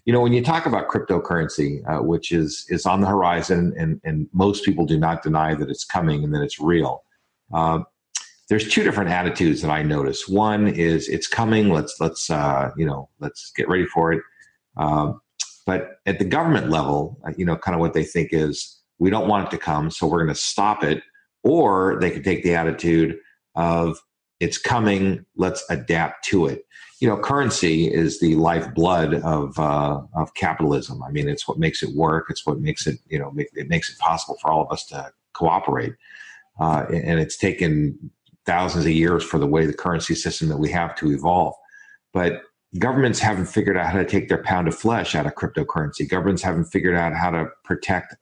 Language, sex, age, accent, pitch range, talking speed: English, male, 50-69, American, 80-100 Hz, 205 wpm